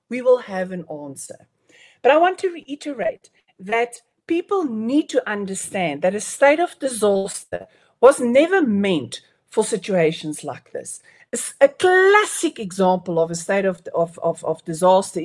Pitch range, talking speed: 190-280 Hz, 150 wpm